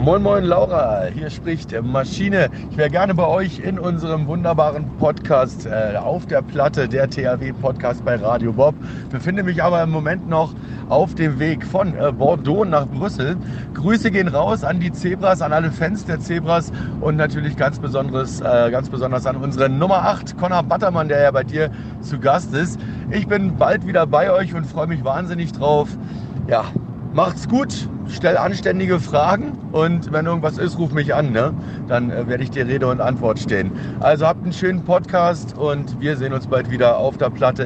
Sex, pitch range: male, 125-170 Hz